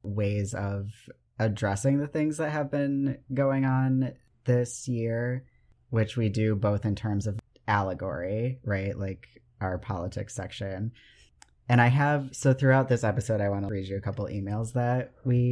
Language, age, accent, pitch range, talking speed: English, 30-49, American, 105-125 Hz, 160 wpm